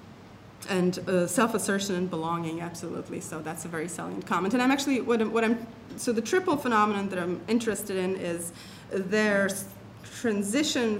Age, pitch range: 30-49, 175-215 Hz